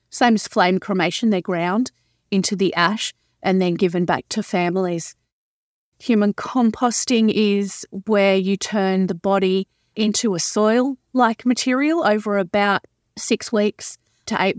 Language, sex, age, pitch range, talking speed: English, female, 30-49, 195-225 Hz, 135 wpm